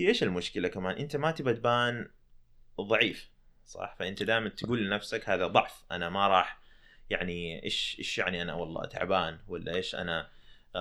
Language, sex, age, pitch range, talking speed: Arabic, male, 20-39, 100-145 Hz, 155 wpm